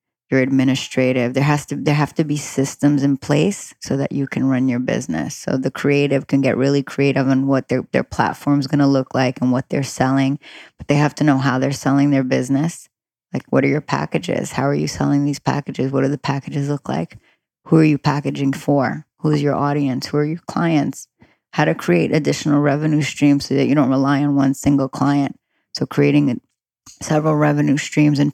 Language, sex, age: English, female, 20-39